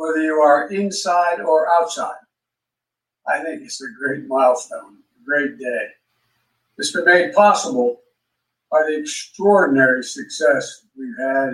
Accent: American